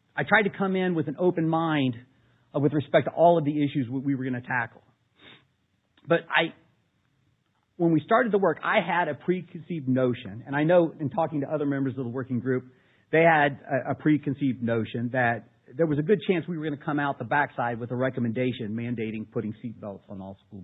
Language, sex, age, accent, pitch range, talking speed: English, male, 50-69, American, 120-165 Hz, 210 wpm